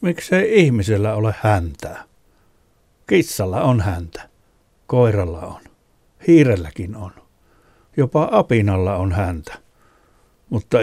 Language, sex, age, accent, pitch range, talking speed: Finnish, male, 60-79, native, 95-115 Hz, 90 wpm